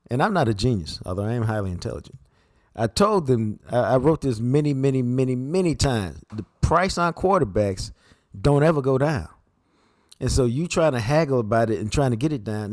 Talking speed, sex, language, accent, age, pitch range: 205 wpm, male, English, American, 50-69, 100-130 Hz